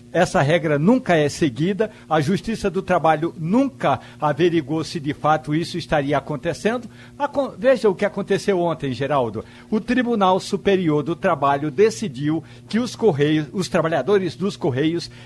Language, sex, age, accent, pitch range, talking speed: Portuguese, male, 60-79, Brazilian, 155-200 Hz, 140 wpm